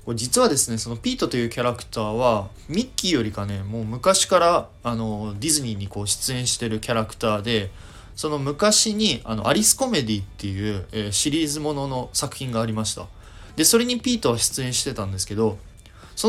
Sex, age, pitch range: male, 20-39, 105-150 Hz